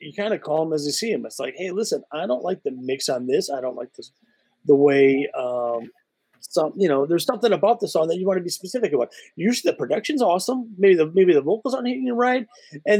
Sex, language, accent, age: male, English, American, 30-49